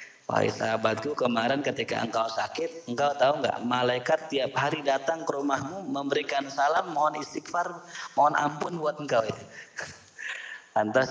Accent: native